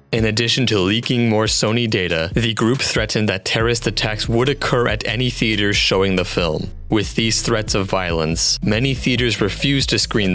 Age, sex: 30-49, male